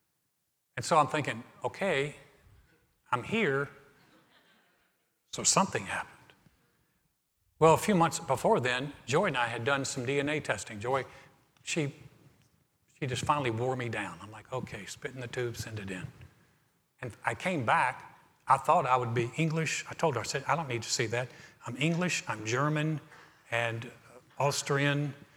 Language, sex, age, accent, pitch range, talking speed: English, male, 60-79, American, 125-155 Hz, 165 wpm